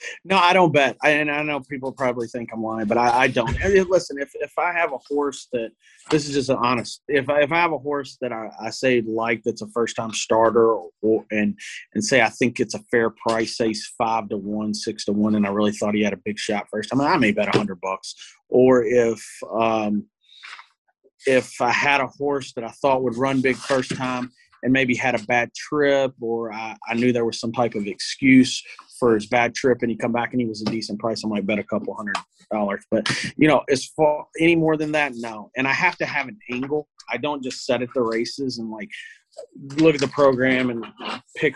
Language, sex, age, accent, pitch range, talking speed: English, male, 30-49, American, 115-145 Hz, 245 wpm